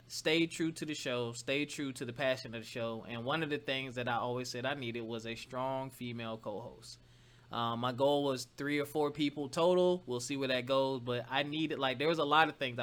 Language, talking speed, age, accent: English, 245 wpm, 20-39, American